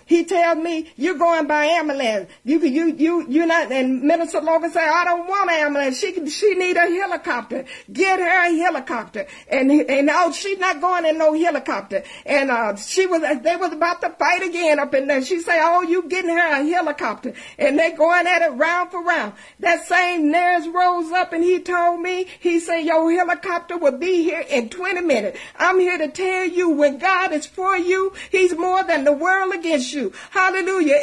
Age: 50-69